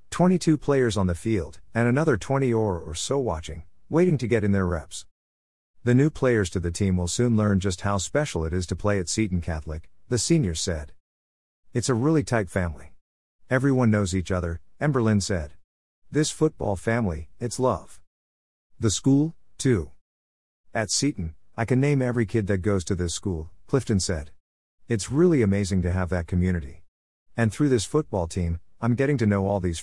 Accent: American